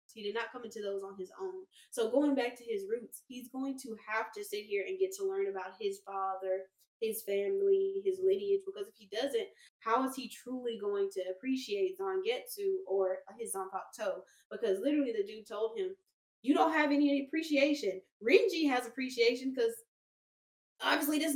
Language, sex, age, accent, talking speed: English, female, 10-29, American, 185 wpm